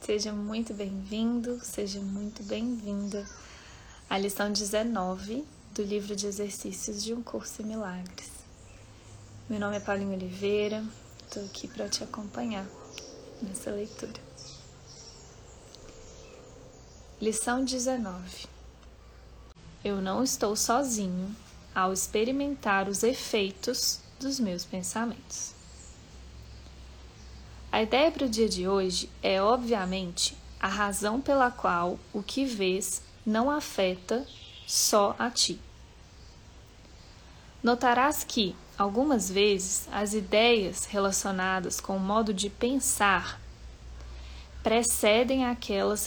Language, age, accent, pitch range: Portuguese, 20-39, Brazilian, 185-230 Hz